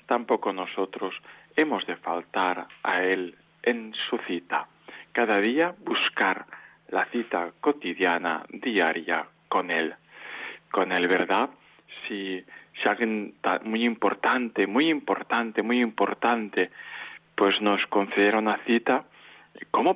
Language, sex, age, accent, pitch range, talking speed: Spanish, male, 40-59, Spanish, 95-120 Hz, 110 wpm